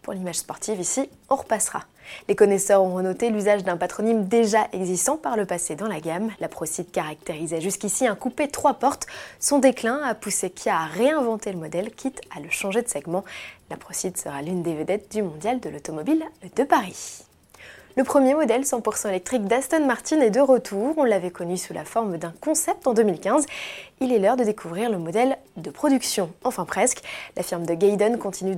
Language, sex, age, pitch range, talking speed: French, female, 20-39, 185-240 Hz, 195 wpm